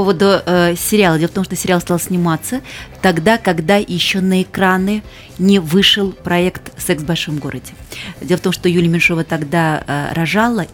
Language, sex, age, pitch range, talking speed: Russian, female, 30-49, 160-190 Hz, 170 wpm